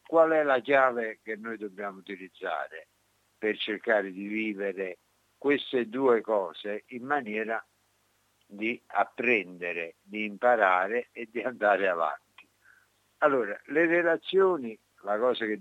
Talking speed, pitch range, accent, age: 120 wpm, 105-135 Hz, native, 60-79